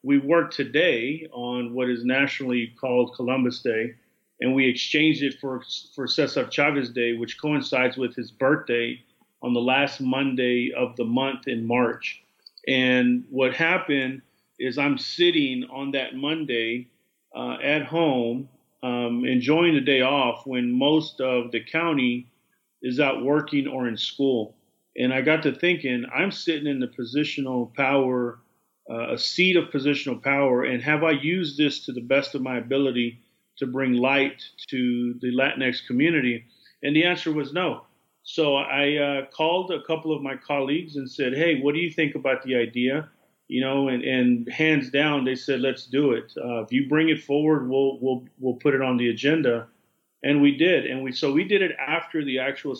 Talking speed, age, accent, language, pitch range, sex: 175 wpm, 40-59, American, English, 125-150 Hz, male